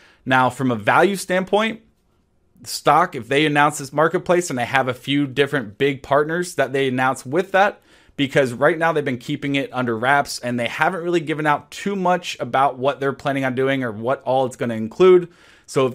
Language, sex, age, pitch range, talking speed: English, male, 20-39, 125-160 Hz, 205 wpm